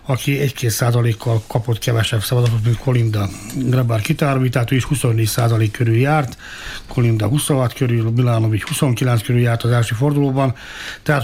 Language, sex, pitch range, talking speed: Hungarian, male, 110-135 Hz, 150 wpm